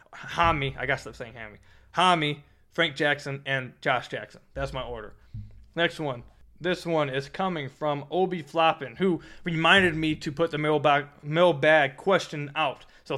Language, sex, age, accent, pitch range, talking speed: English, male, 20-39, American, 145-170 Hz, 160 wpm